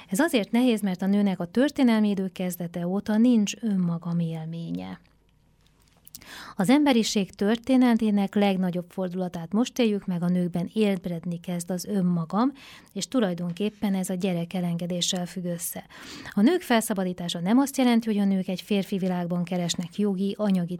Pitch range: 175-210 Hz